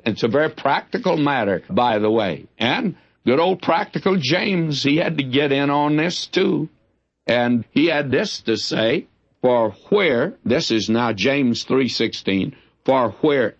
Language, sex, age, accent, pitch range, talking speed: English, male, 60-79, American, 115-155 Hz, 160 wpm